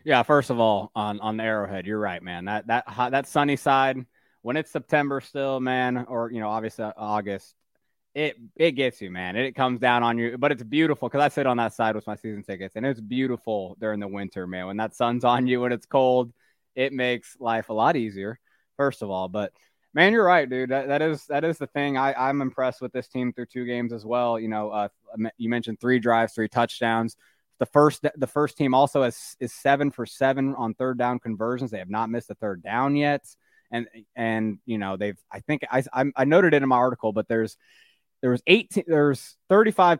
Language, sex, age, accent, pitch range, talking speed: English, male, 20-39, American, 110-140 Hz, 225 wpm